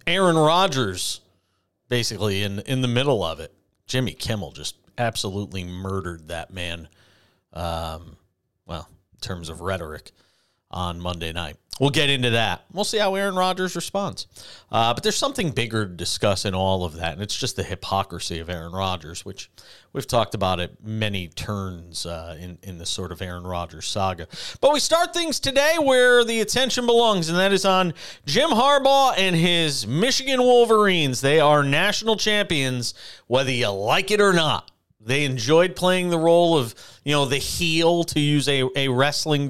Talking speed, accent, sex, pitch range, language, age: 175 wpm, American, male, 100-165 Hz, English, 40-59